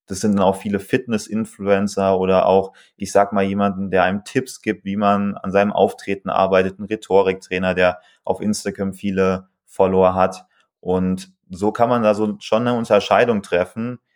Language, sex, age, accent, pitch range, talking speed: German, male, 20-39, German, 95-110 Hz, 170 wpm